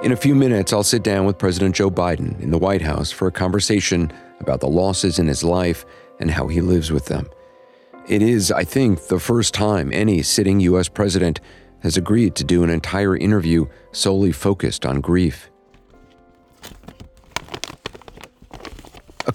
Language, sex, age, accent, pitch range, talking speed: English, male, 50-69, American, 80-105 Hz, 165 wpm